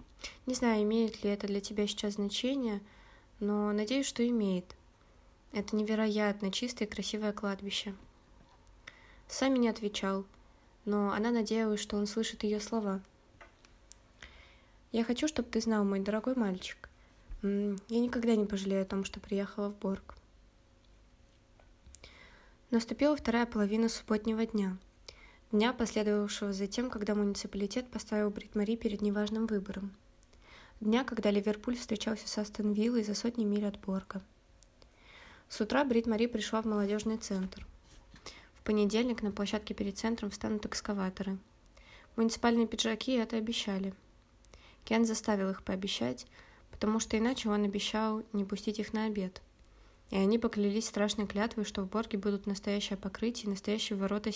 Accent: native